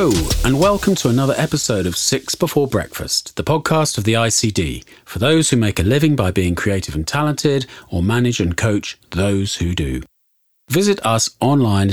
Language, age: English, 40-59